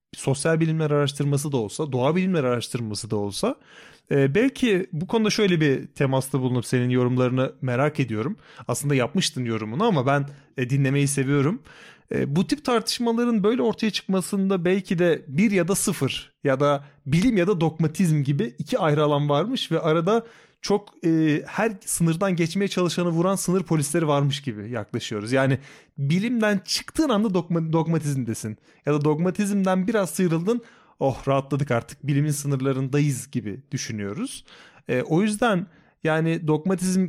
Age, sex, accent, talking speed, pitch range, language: 30-49, male, native, 140 wpm, 135-185 Hz, Turkish